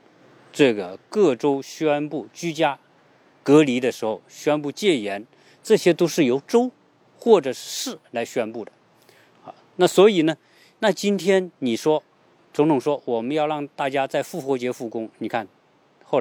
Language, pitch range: Chinese, 115-155 Hz